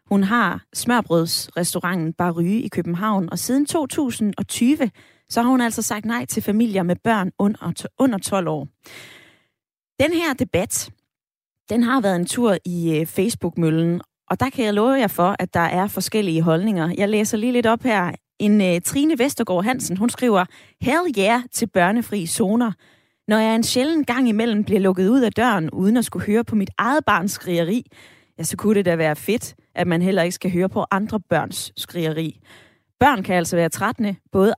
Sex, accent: female, native